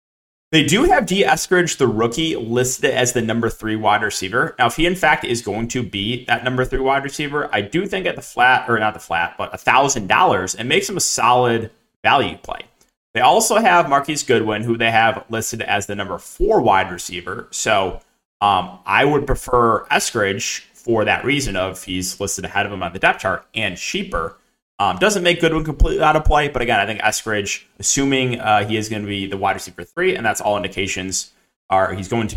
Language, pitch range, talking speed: English, 105-135 Hz, 215 wpm